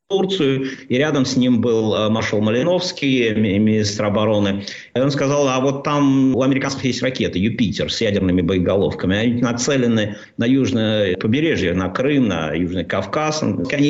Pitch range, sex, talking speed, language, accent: 120-155 Hz, male, 150 wpm, Russian, native